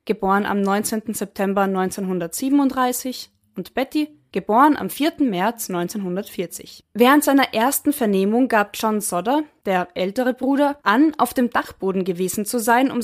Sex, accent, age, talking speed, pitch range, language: female, German, 20-39, 140 wpm, 185-245 Hz, German